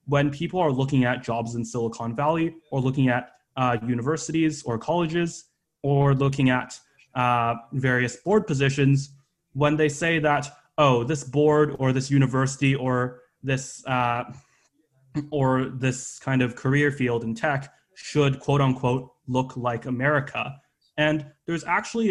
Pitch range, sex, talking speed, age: 125-150 Hz, male, 140 wpm, 20-39